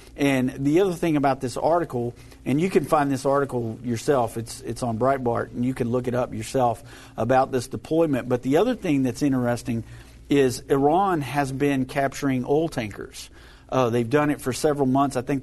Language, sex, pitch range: English, male, 120-140 Hz